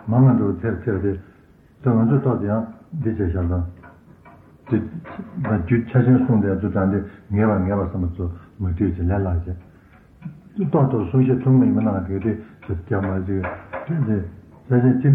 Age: 60-79